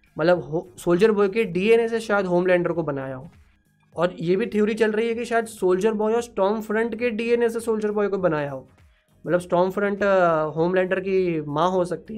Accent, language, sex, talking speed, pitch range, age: native, Hindi, male, 205 wpm, 160-210 Hz, 20-39